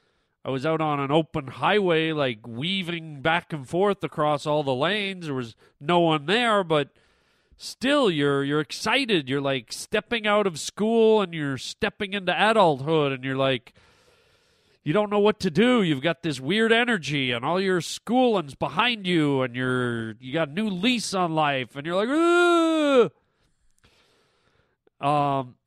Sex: male